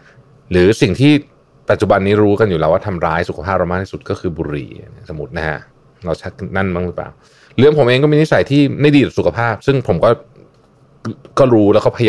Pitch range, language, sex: 90-135 Hz, Thai, male